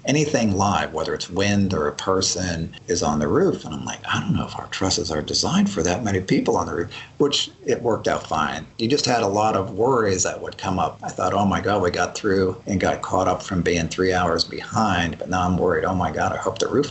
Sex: male